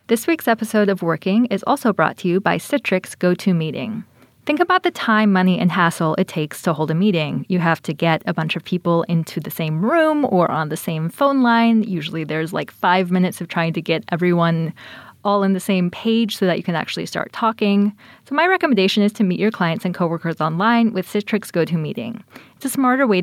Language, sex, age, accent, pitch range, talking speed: English, female, 20-39, American, 175-230 Hz, 215 wpm